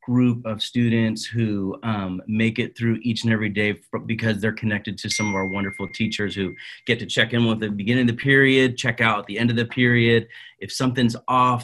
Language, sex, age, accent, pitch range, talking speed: English, male, 30-49, American, 110-130 Hz, 220 wpm